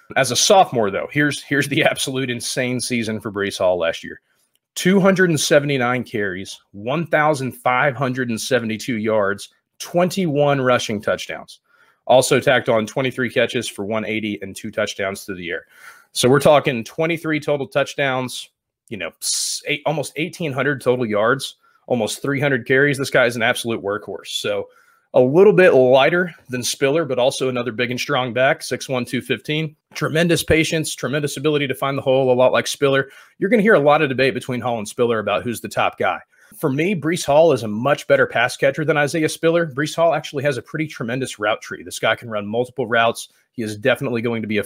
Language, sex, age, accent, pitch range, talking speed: English, male, 30-49, American, 115-150 Hz, 185 wpm